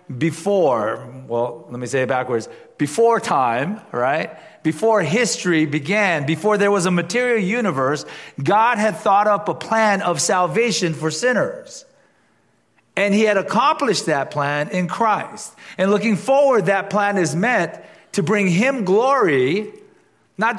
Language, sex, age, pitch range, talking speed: English, male, 40-59, 155-225 Hz, 145 wpm